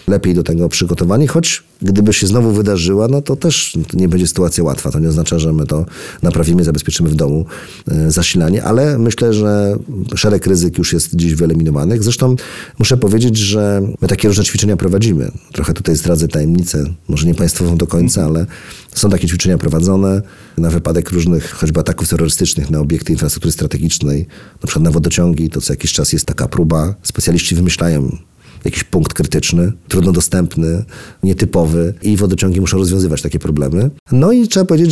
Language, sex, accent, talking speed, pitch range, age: Polish, male, native, 170 wpm, 85-105 Hz, 40-59